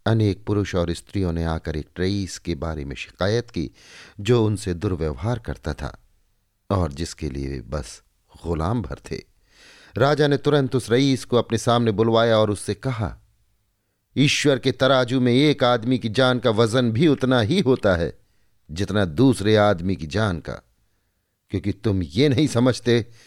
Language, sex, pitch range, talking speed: Hindi, male, 95-120 Hz, 165 wpm